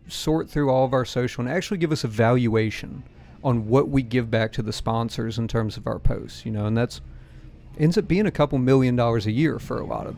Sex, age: male, 40-59